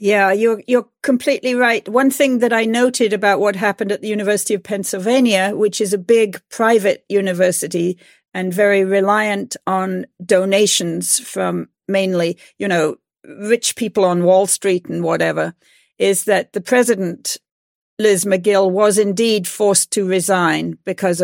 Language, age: English, 50-69